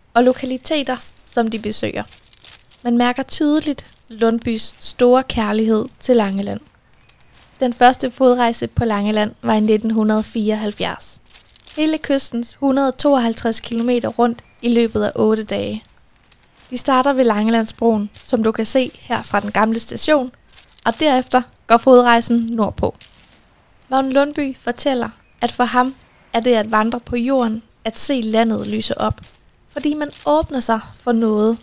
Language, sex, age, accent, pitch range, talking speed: Danish, female, 10-29, native, 220-260 Hz, 135 wpm